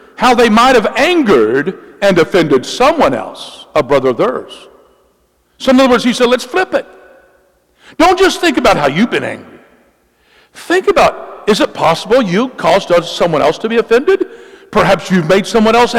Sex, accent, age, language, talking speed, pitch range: male, American, 60-79, English, 175 wpm, 160-265 Hz